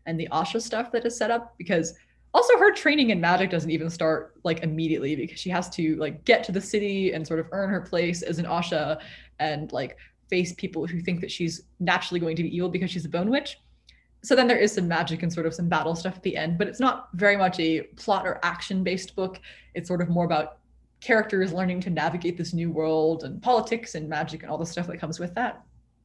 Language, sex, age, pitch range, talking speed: English, female, 20-39, 170-205 Hz, 240 wpm